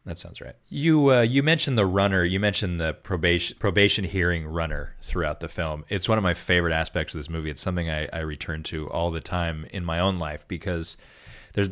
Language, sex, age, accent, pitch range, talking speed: English, male, 30-49, American, 85-100 Hz, 220 wpm